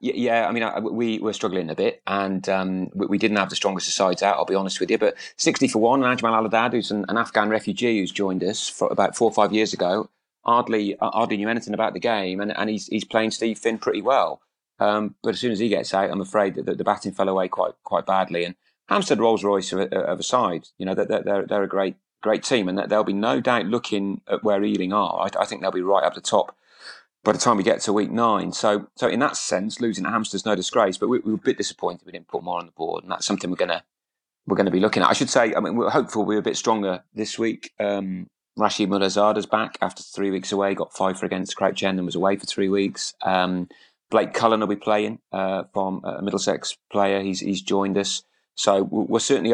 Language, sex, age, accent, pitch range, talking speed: English, male, 30-49, British, 95-110 Hz, 250 wpm